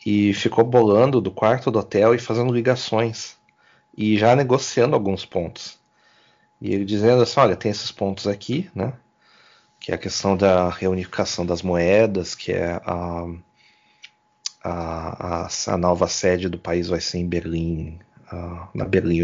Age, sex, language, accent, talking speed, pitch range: 30-49, male, Portuguese, Brazilian, 155 wpm, 90-115 Hz